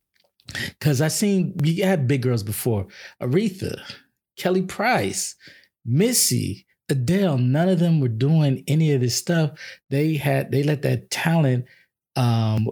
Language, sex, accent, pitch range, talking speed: English, male, American, 125-170 Hz, 135 wpm